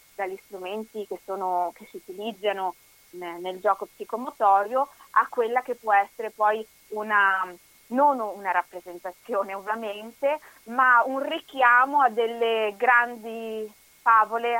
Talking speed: 120 wpm